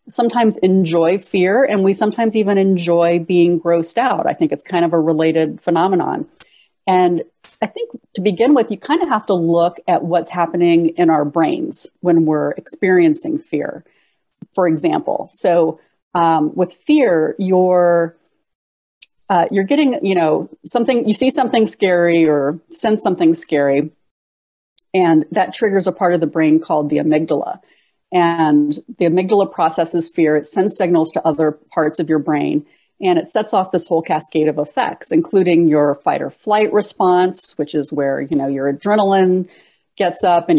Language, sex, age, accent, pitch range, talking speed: English, female, 40-59, American, 160-210 Hz, 165 wpm